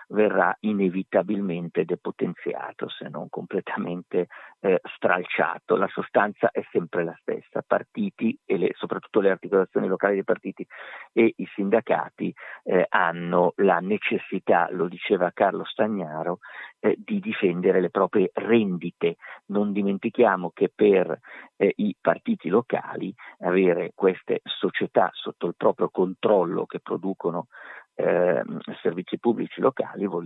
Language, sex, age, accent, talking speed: Italian, male, 50-69, native, 125 wpm